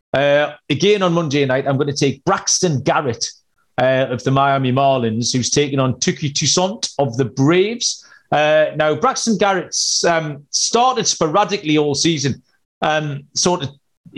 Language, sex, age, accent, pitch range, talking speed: English, male, 40-59, British, 135-170 Hz, 150 wpm